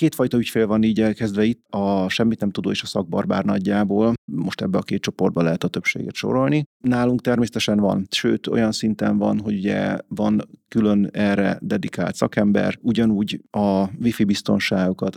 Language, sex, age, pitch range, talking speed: Hungarian, male, 30-49, 100-120 Hz, 160 wpm